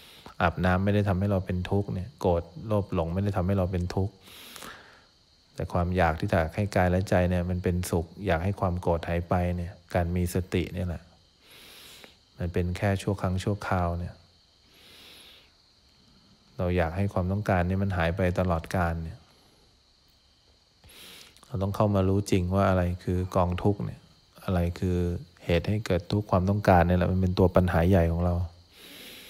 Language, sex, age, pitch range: English, male, 20-39, 90-100 Hz